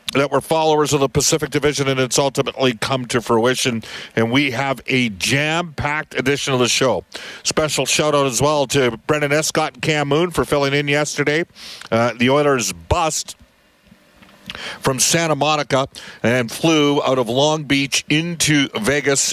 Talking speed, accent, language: 165 wpm, American, English